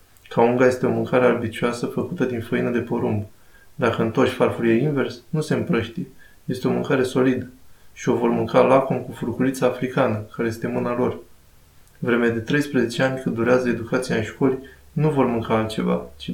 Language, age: Romanian, 20-39